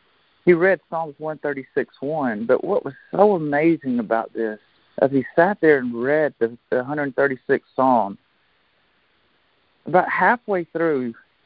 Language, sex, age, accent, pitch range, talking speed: English, male, 50-69, American, 120-175 Hz, 125 wpm